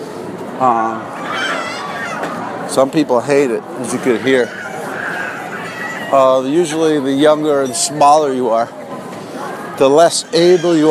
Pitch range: 145-180 Hz